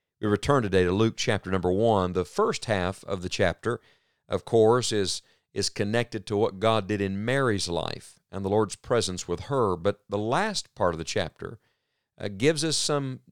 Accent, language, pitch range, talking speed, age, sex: American, English, 95-120 Hz, 195 wpm, 50-69, male